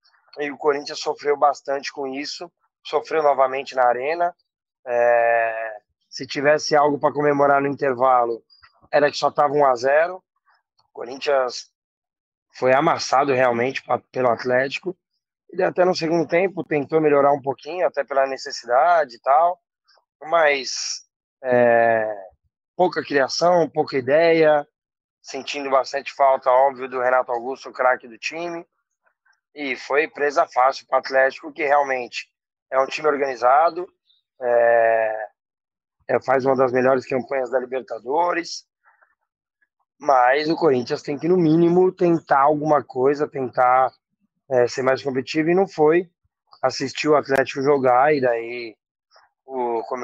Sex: male